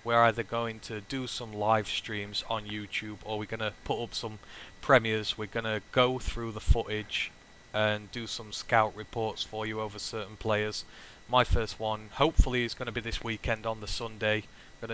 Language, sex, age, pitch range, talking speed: English, male, 20-39, 105-120 Hz, 200 wpm